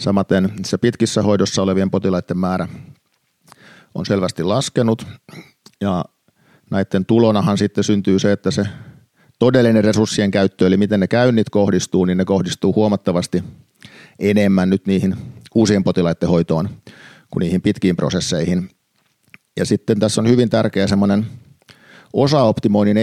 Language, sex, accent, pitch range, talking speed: Finnish, male, native, 95-110 Hz, 125 wpm